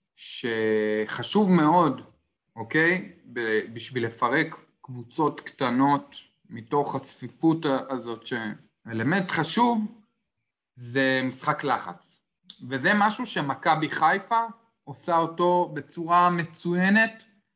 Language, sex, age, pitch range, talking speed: Hebrew, male, 20-39, 130-175 Hz, 80 wpm